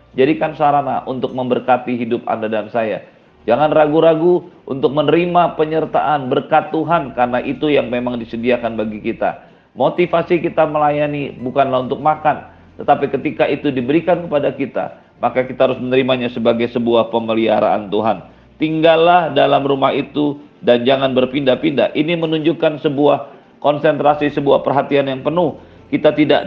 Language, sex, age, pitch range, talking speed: Indonesian, male, 40-59, 125-155 Hz, 135 wpm